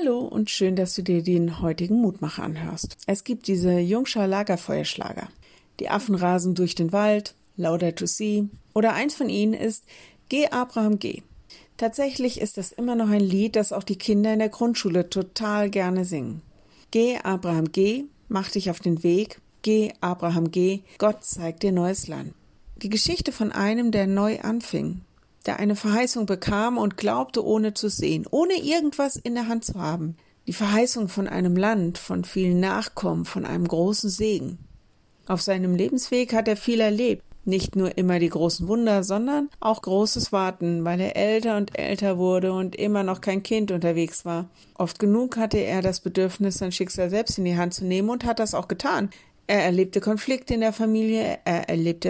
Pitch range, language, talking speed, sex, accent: 180-220 Hz, German, 180 wpm, female, German